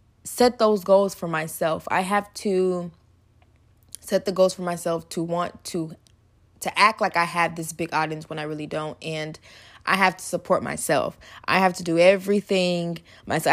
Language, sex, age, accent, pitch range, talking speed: English, female, 20-39, American, 165-205 Hz, 180 wpm